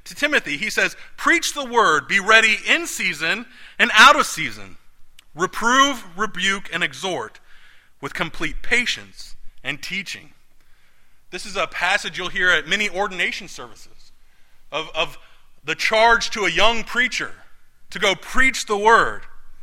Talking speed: 145 wpm